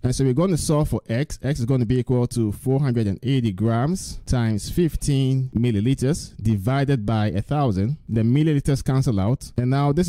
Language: English